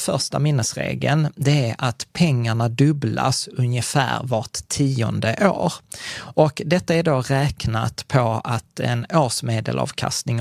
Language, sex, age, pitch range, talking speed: Swedish, male, 20-39, 120-150 Hz, 115 wpm